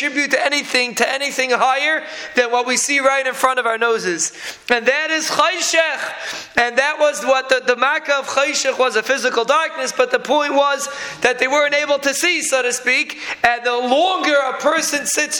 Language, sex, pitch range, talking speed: English, male, 245-290 Hz, 200 wpm